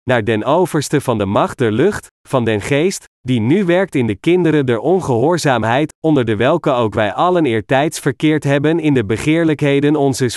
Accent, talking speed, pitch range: Dutch, 185 wpm, 125-160 Hz